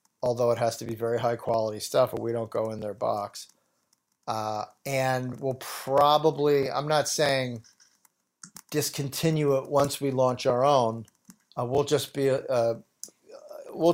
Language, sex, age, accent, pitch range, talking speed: English, male, 50-69, American, 115-135 Hz, 140 wpm